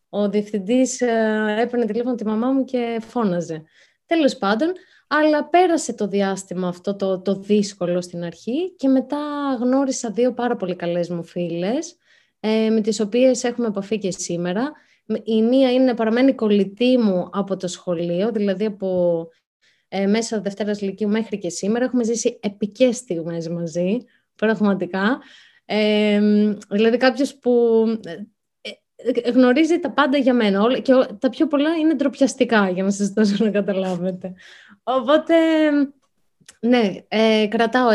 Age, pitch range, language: 20-39, 195-255 Hz, Greek